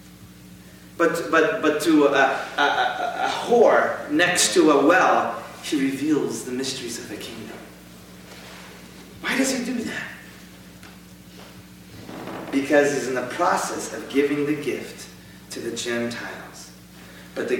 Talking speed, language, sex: 125 wpm, English, male